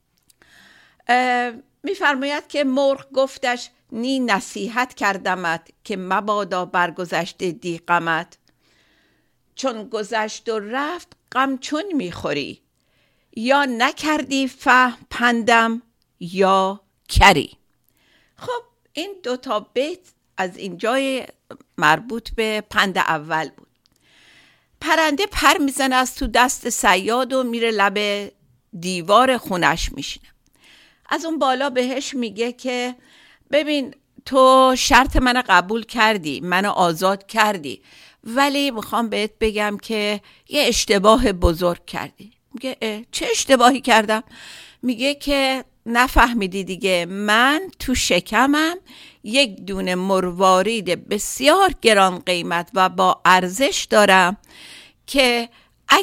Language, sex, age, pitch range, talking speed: Persian, female, 50-69, 195-265 Hz, 100 wpm